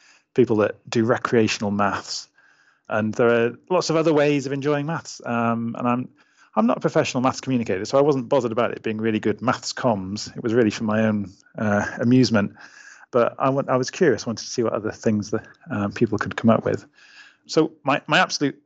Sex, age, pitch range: male, 30-49, 110-140 Hz